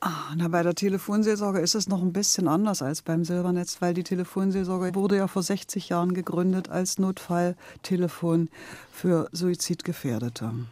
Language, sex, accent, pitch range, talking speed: German, female, German, 155-190 Hz, 145 wpm